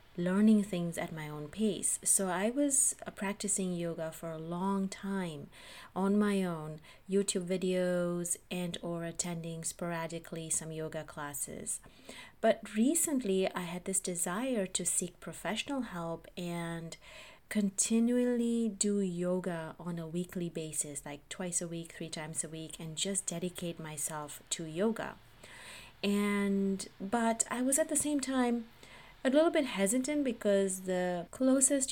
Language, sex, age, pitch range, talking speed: English, female, 30-49, 165-215 Hz, 140 wpm